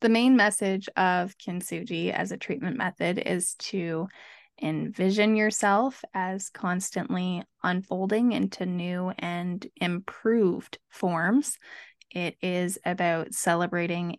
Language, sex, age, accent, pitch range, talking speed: English, female, 20-39, American, 170-200 Hz, 105 wpm